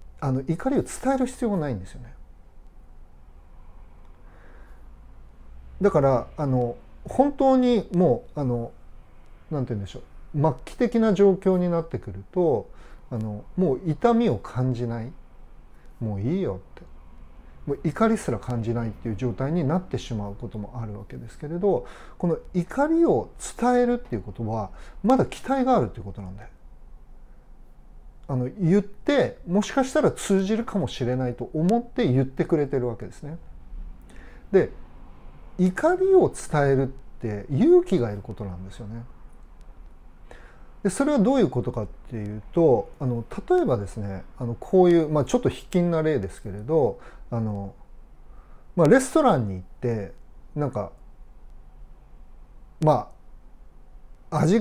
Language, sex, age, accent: Japanese, male, 40-59, native